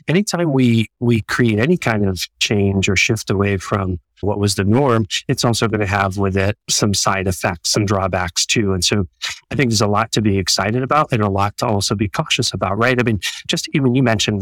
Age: 40-59